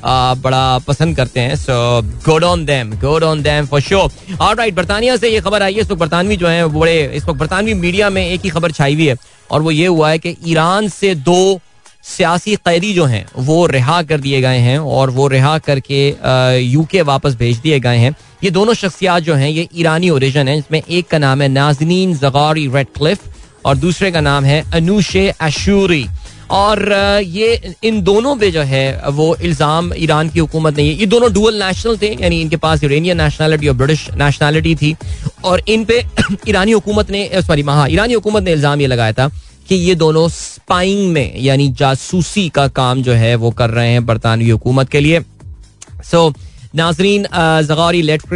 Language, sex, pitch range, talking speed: Hindi, male, 135-180 Hz, 180 wpm